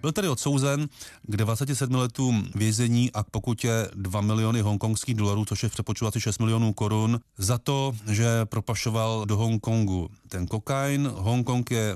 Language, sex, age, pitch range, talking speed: Czech, male, 30-49, 100-120 Hz, 150 wpm